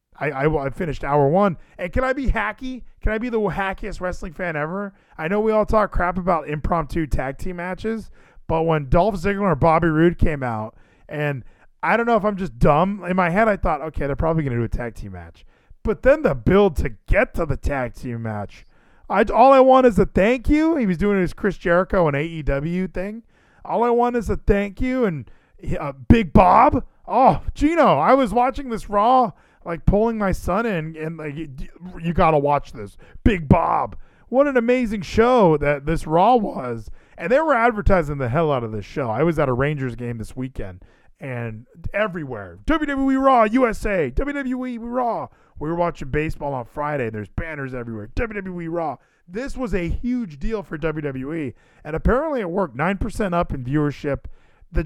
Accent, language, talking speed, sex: American, English, 200 wpm, male